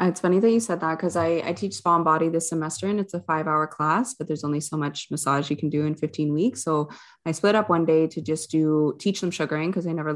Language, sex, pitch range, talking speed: English, female, 155-175 Hz, 280 wpm